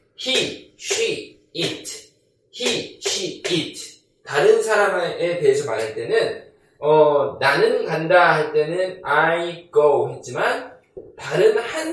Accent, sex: native, male